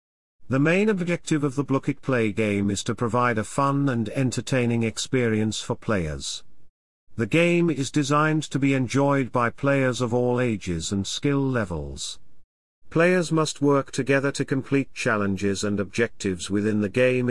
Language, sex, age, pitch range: English, male, 40-59, 105-140 Hz